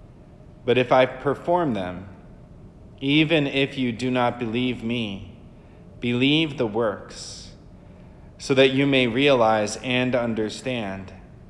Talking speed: 115 wpm